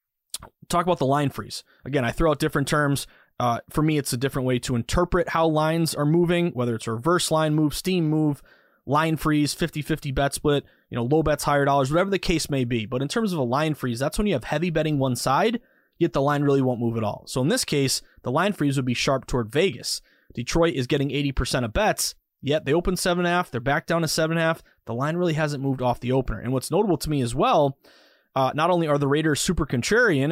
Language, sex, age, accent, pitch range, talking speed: English, male, 20-39, American, 130-165 Hz, 240 wpm